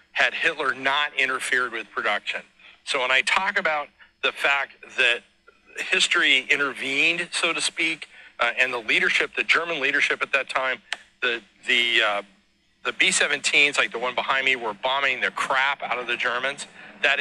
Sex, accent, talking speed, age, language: male, American, 160 wpm, 40-59, English